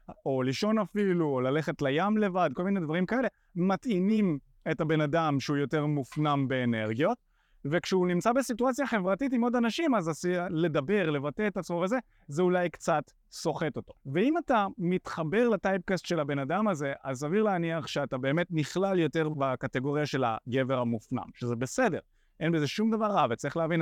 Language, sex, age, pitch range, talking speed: Hebrew, male, 30-49, 135-190 Hz, 165 wpm